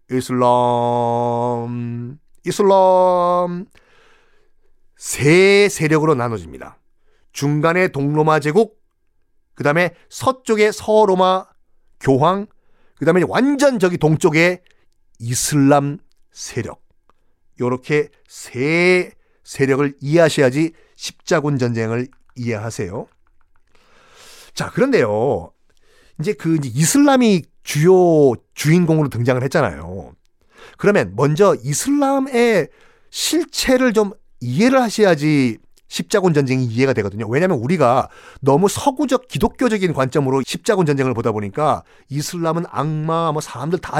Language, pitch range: Korean, 130-195 Hz